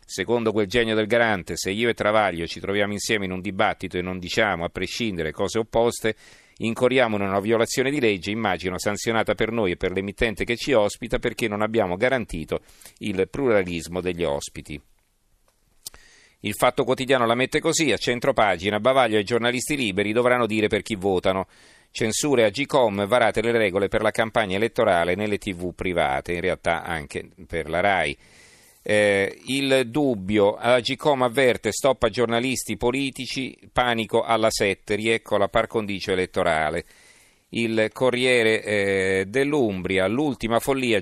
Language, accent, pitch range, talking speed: Italian, native, 100-120 Hz, 155 wpm